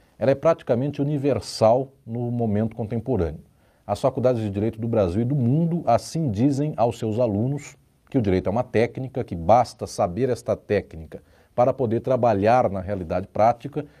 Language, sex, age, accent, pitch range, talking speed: Portuguese, male, 40-59, Brazilian, 105-140 Hz, 165 wpm